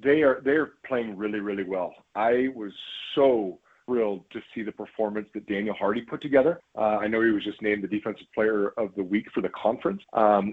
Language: English